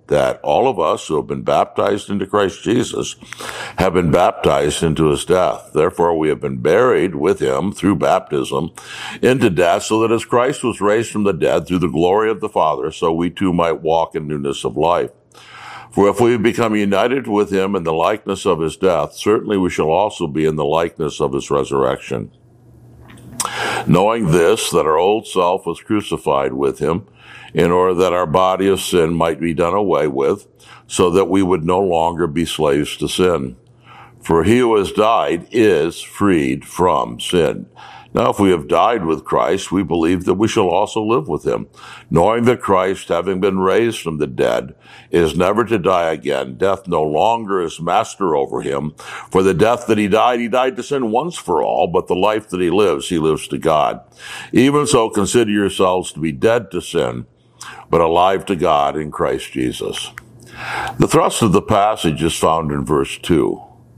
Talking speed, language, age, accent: 190 wpm, English, 60-79, American